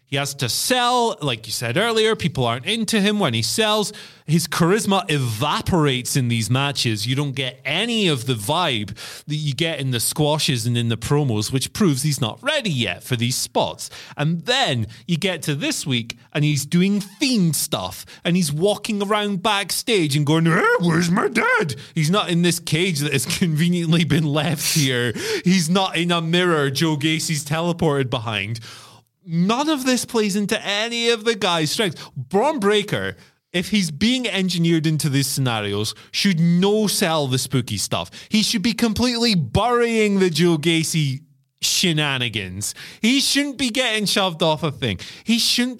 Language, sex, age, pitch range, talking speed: English, male, 30-49, 135-205 Hz, 175 wpm